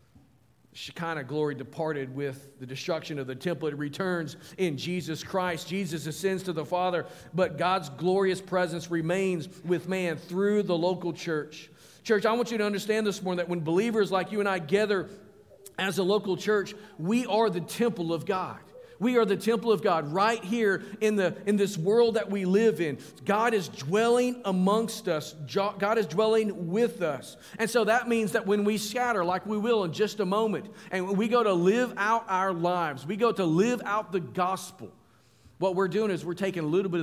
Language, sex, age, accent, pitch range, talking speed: English, male, 50-69, American, 165-210 Hz, 195 wpm